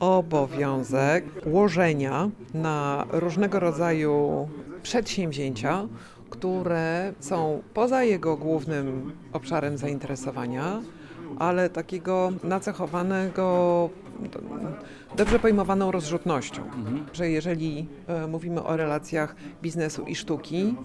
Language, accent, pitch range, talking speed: Polish, native, 155-185 Hz, 80 wpm